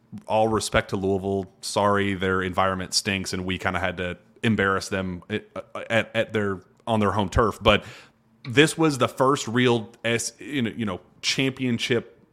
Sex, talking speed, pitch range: male, 165 wpm, 100-120 Hz